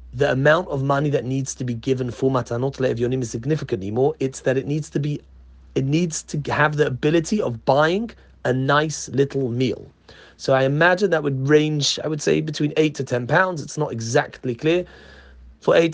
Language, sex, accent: English, male, British